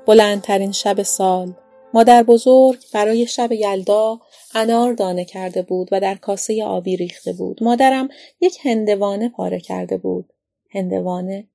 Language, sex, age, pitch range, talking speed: Persian, female, 30-49, 190-240 Hz, 130 wpm